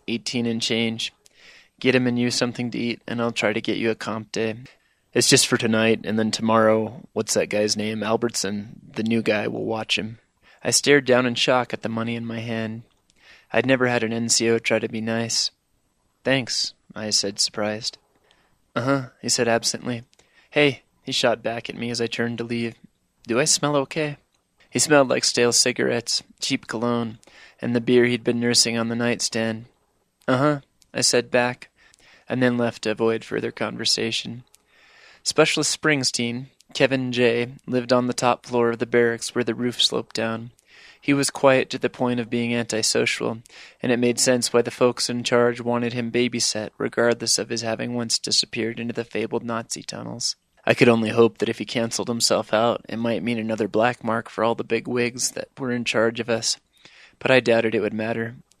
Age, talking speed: 20-39, 195 wpm